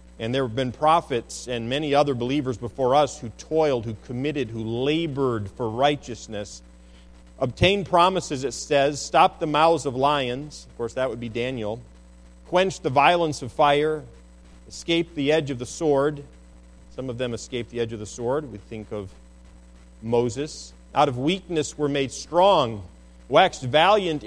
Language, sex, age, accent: English, male, 40-59, American